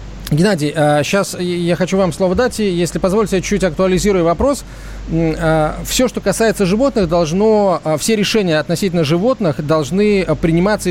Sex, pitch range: male, 155-195 Hz